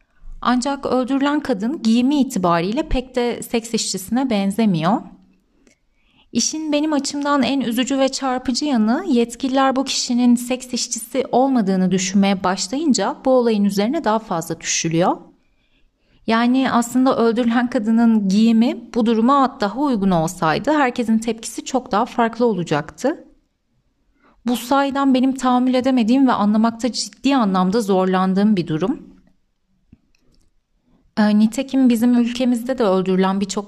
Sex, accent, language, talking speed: female, native, Turkish, 120 wpm